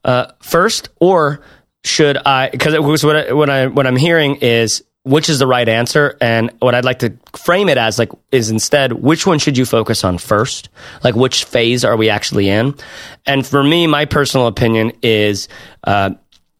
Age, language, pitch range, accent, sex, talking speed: 30-49, English, 105-145 Hz, American, male, 185 wpm